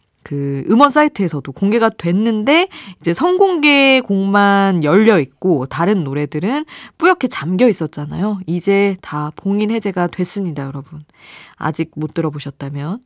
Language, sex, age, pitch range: Korean, female, 20-39, 155-205 Hz